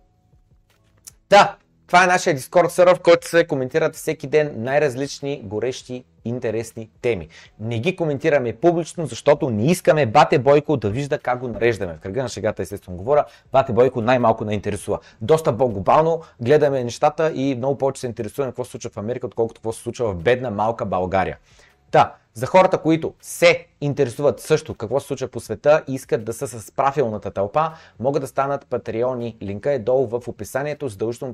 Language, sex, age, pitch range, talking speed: Bulgarian, male, 30-49, 110-145 Hz, 170 wpm